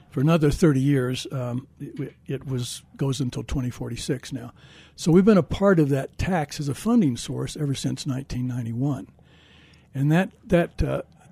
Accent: American